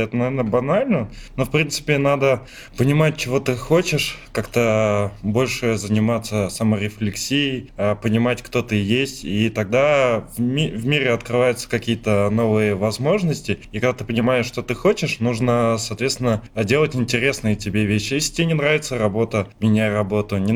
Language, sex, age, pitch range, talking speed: Russian, male, 20-39, 110-135 Hz, 145 wpm